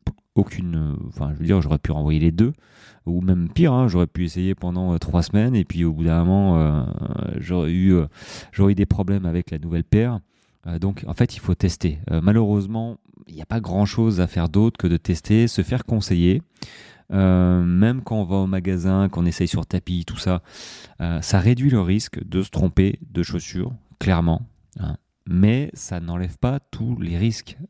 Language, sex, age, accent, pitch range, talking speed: French, male, 30-49, French, 85-110 Hz, 200 wpm